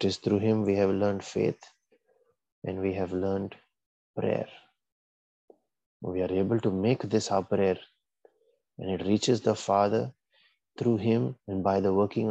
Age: 30-49